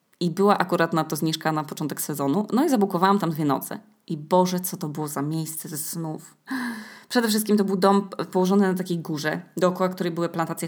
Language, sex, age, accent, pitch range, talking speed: Polish, female, 20-39, native, 160-190 Hz, 210 wpm